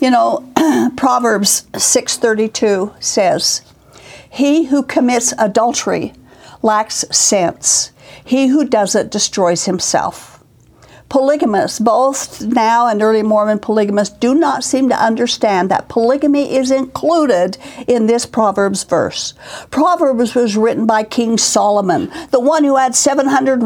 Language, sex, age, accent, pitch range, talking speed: English, female, 60-79, American, 215-275 Hz, 120 wpm